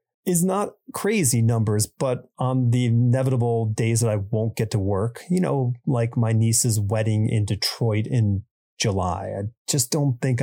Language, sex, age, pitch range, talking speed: English, male, 30-49, 105-130 Hz, 165 wpm